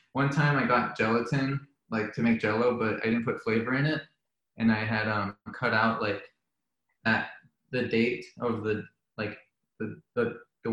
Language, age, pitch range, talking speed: English, 20-39, 110-125 Hz, 180 wpm